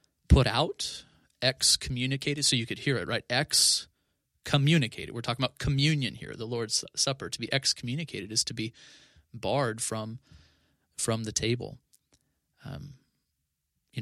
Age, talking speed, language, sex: 30-49, 135 wpm, English, male